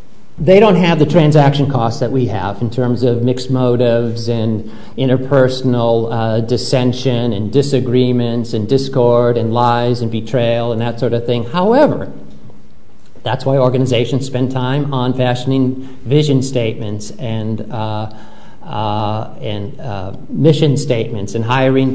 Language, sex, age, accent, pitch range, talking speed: English, male, 50-69, American, 110-130 Hz, 135 wpm